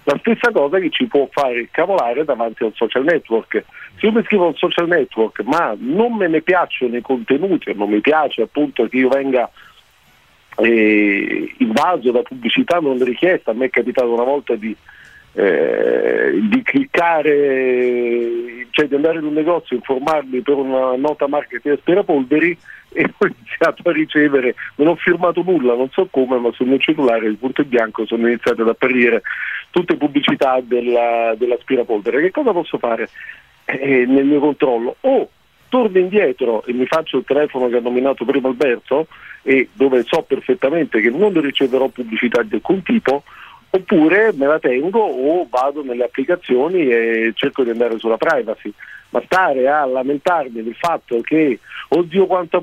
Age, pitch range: 50-69, 125-185 Hz